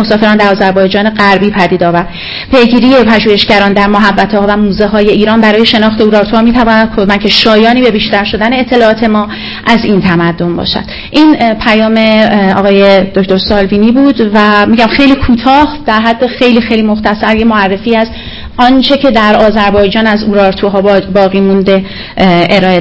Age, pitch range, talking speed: 30-49, 205-235 Hz, 140 wpm